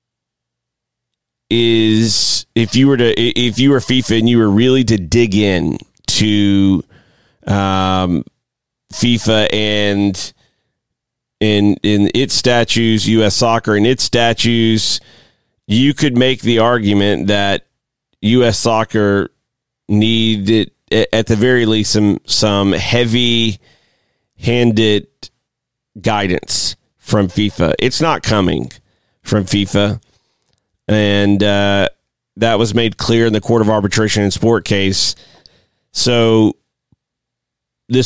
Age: 30-49